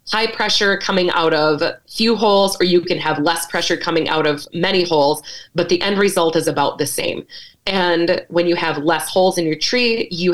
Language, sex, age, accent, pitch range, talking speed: English, female, 30-49, American, 165-195 Hz, 210 wpm